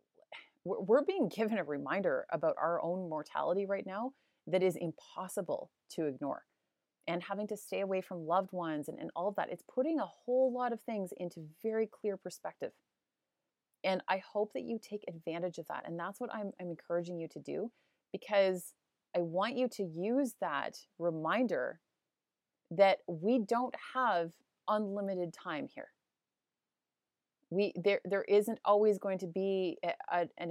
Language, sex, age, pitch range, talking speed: English, female, 30-49, 175-220 Hz, 160 wpm